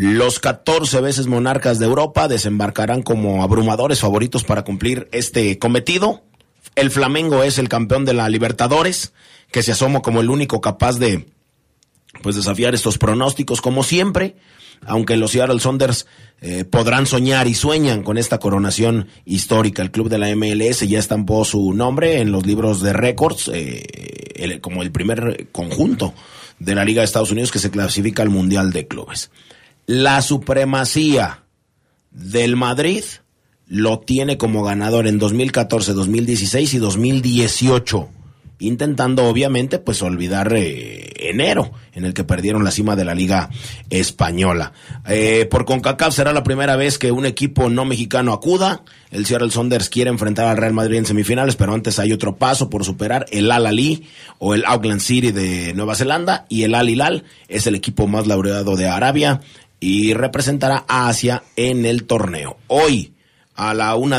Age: 30-49